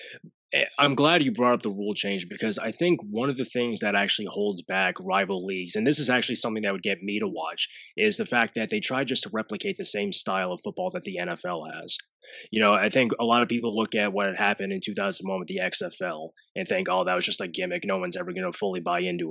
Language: English